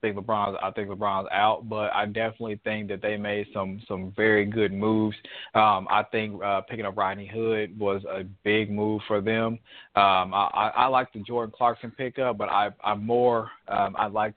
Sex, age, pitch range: male, 20-39, 105-115 Hz